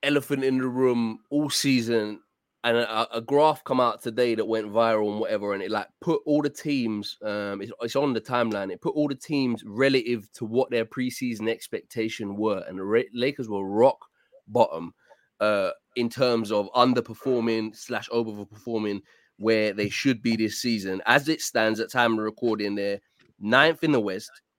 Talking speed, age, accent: 185 wpm, 20-39, British